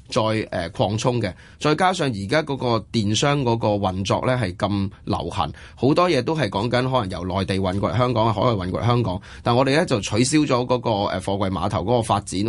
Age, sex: 20-39, male